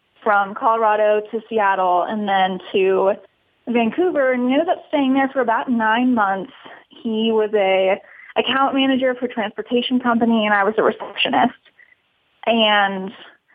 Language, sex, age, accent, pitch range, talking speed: English, female, 20-39, American, 205-245 Hz, 145 wpm